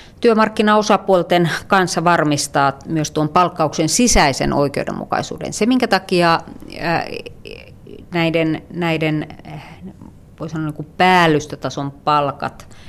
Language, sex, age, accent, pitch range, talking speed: Finnish, female, 30-49, native, 140-170 Hz, 75 wpm